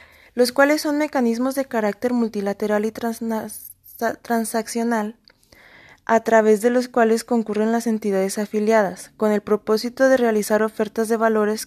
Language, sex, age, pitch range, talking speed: Spanish, female, 20-39, 215-245 Hz, 135 wpm